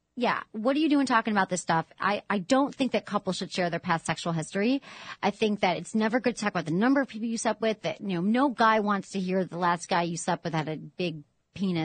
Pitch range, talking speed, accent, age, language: 190-250 Hz, 280 wpm, American, 30-49, English